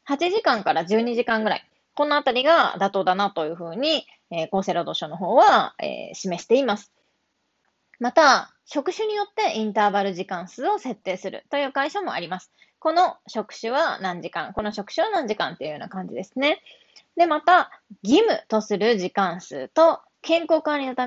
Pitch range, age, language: 210-315 Hz, 20-39, Japanese